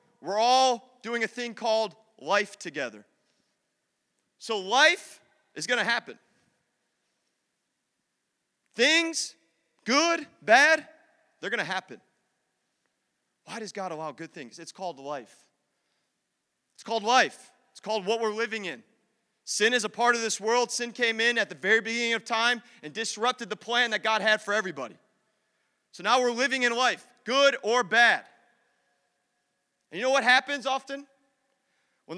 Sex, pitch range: male, 215-270 Hz